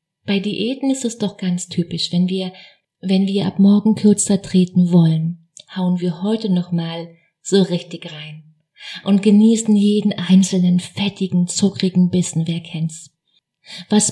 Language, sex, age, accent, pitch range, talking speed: German, female, 30-49, German, 165-195 Hz, 140 wpm